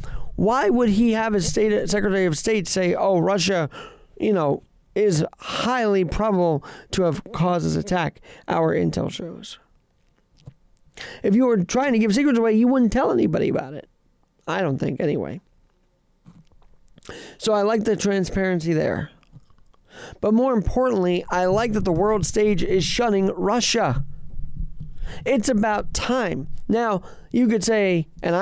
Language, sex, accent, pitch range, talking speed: English, male, American, 180-235 Hz, 145 wpm